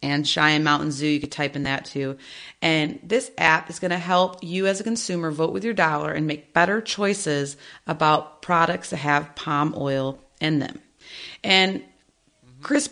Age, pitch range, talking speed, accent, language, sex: 30-49, 150-200 Hz, 180 wpm, American, English, female